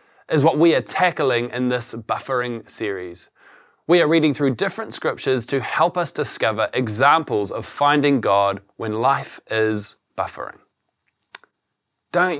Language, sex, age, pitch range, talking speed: English, male, 20-39, 130-165 Hz, 135 wpm